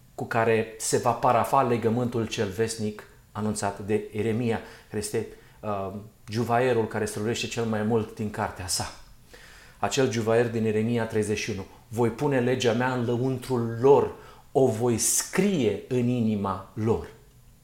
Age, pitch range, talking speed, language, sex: 40-59, 110-140 Hz, 135 wpm, Romanian, male